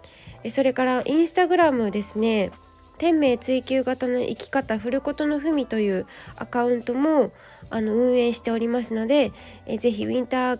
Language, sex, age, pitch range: Japanese, female, 20-39, 220-275 Hz